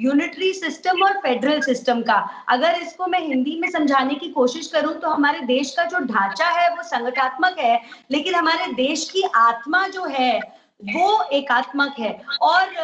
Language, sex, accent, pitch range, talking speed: English, female, Indian, 255-335 Hz, 175 wpm